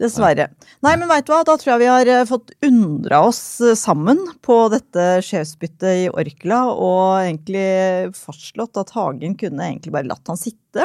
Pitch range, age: 180-250 Hz, 30-49